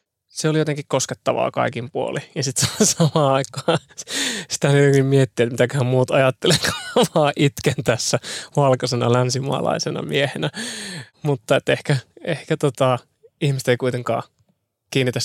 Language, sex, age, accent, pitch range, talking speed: Finnish, male, 20-39, native, 130-150 Hz, 120 wpm